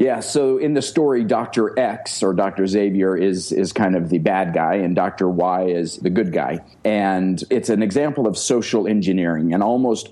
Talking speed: 195 wpm